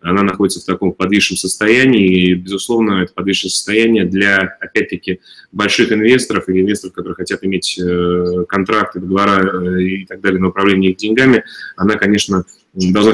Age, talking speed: 20-39, 145 wpm